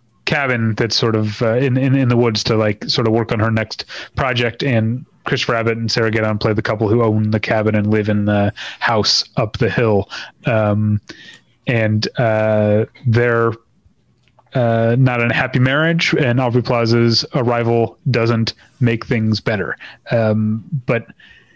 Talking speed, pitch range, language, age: 170 wpm, 110-130 Hz, English, 30-49